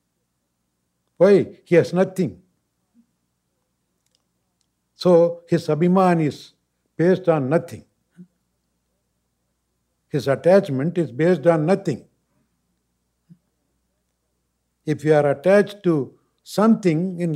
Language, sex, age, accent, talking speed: English, male, 60-79, Indian, 85 wpm